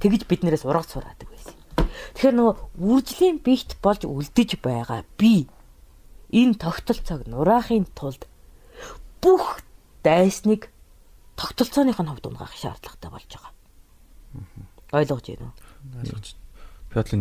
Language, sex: Korean, female